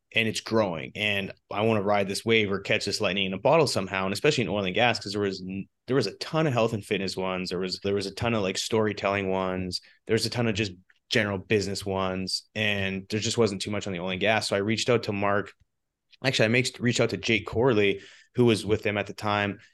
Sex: male